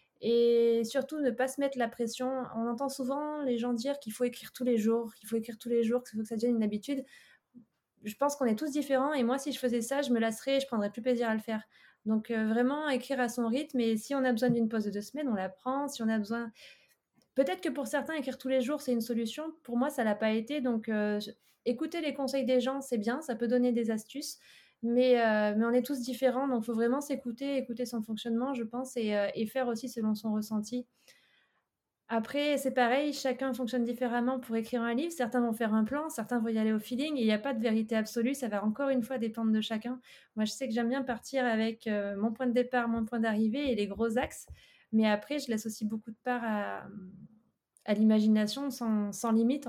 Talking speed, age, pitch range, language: 245 wpm, 20-39, 225-265 Hz, French